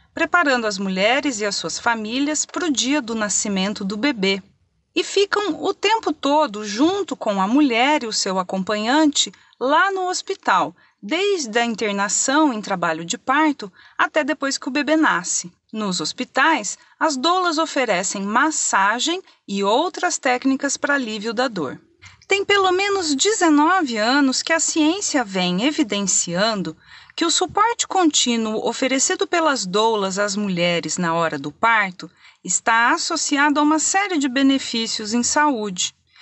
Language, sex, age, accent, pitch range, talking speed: Portuguese, female, 40-59, Brazilian, 210-310 Hz, 145 wpm